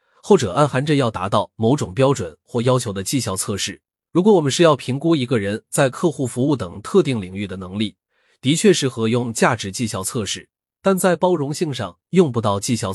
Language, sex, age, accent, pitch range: Chinese, male, 20-39, native, 105-160 Hz